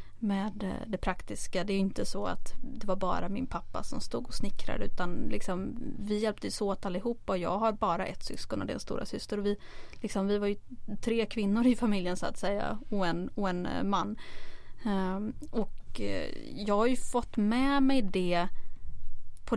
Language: English